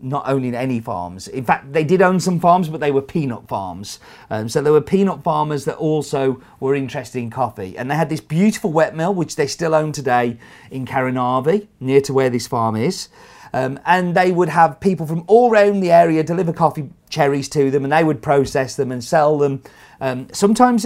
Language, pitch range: English, 130-175 Hz